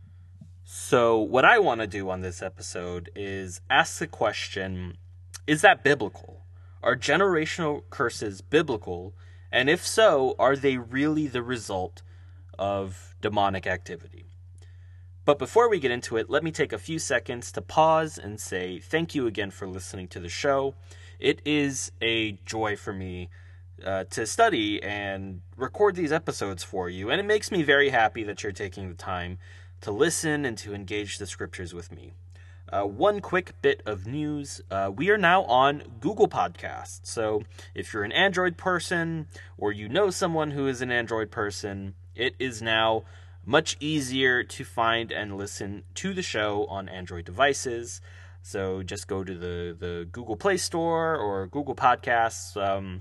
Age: 20-39